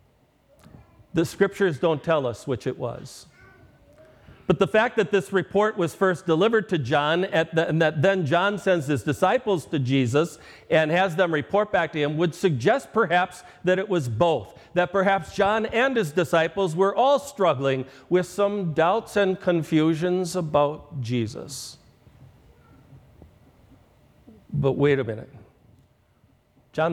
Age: 50-69